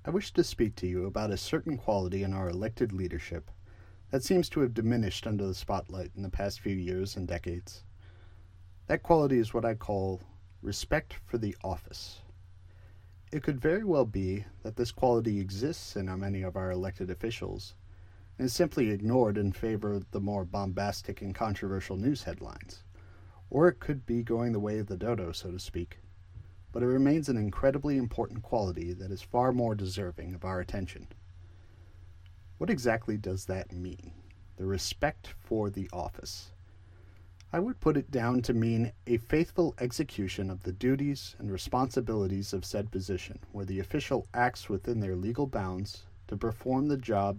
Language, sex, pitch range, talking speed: English, male, 90-115 Hz, 170 wpm